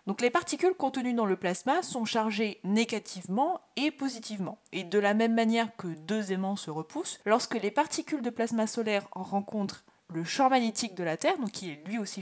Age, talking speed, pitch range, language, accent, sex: 20-39, 195 wpm, 200-280 Hz, French, French, female